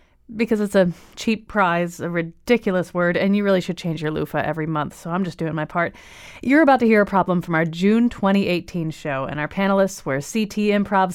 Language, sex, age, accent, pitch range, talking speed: English, female, 30-49, American, 170-210 Hz, 215 wpm